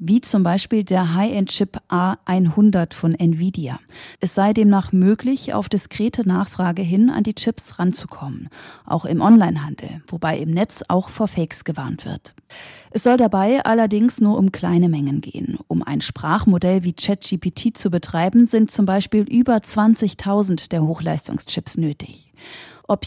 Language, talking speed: German, 145 wpm